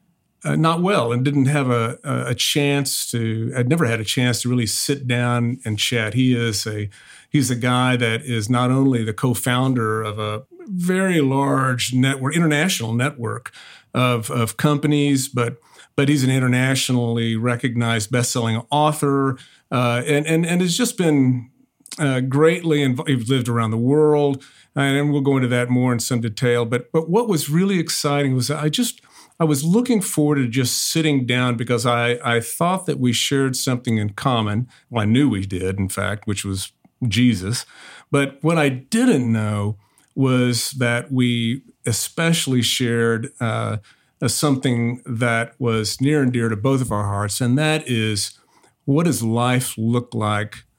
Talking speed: 170 wpm